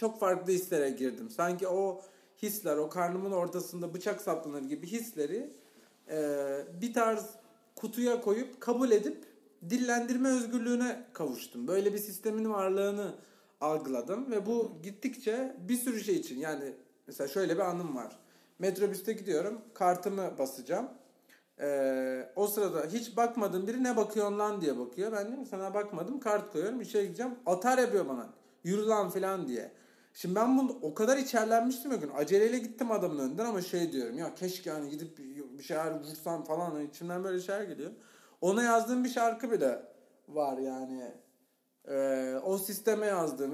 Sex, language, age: male, Turkish, 40-59